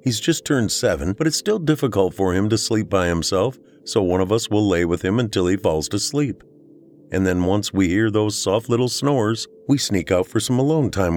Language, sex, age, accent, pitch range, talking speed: English, male, 50-69, American, 95-125 Hz, 230 wpm